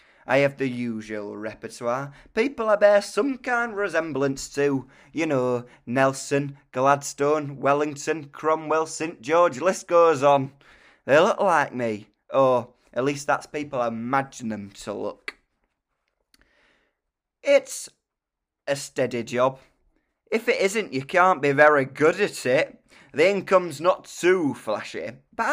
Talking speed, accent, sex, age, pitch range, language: 135 wpm, British, male, 20-39, 130-185 Hz, English